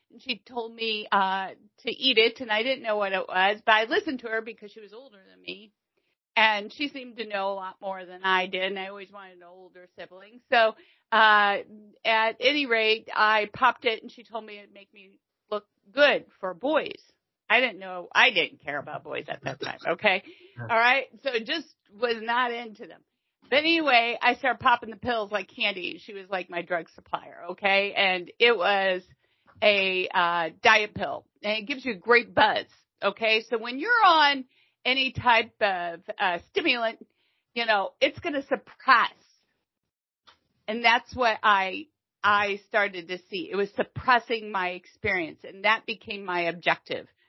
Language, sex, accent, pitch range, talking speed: English, female, American, 190-240 Hz, 190 wpm